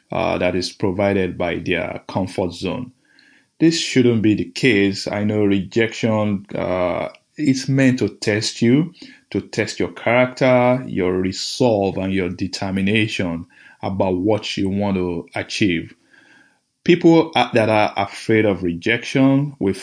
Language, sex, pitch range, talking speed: English, male, 95-120 Hz, 135 wpm